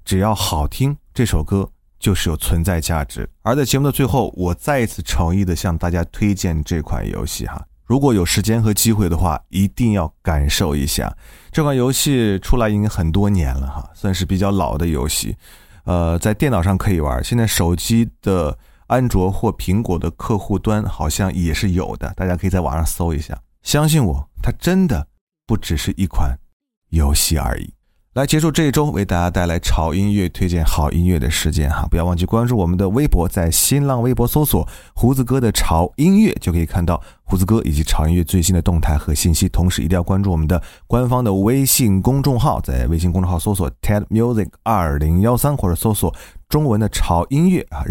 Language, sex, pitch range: Chinese, male, 85-115 Hz